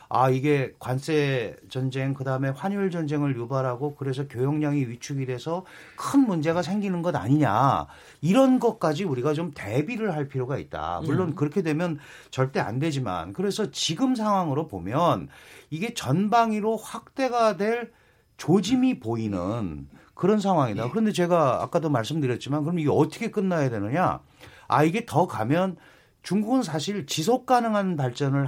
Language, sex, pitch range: Korean, male, 135-190 Hz